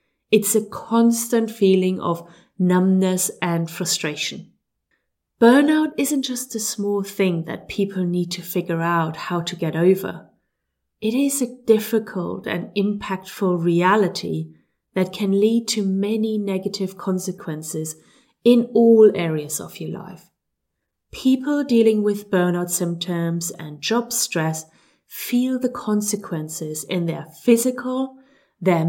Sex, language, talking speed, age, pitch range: female, English, 125 wpm, 30-49, 175-220 Hz